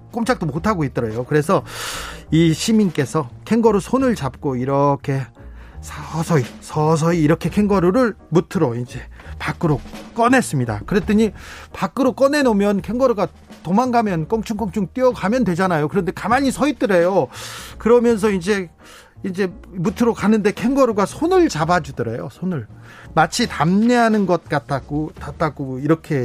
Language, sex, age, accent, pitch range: Korean, male, 40-59, native, 145-230 Hz